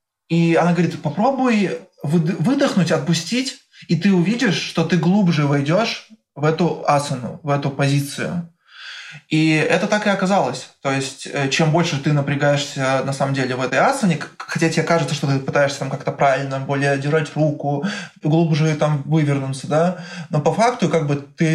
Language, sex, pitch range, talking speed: Russian, male, 140-170 Hz, 160 wpm